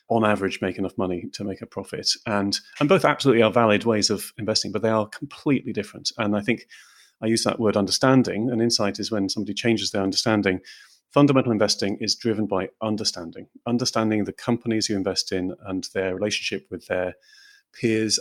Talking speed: 190 wpm